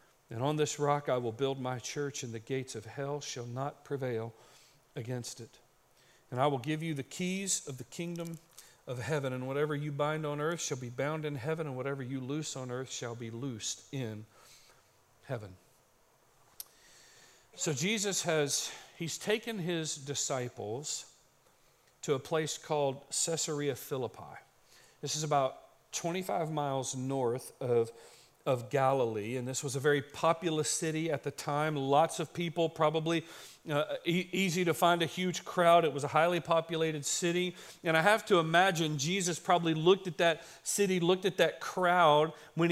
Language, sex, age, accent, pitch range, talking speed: English, male, 40-59, American, 140-185 Hz, 165 wpm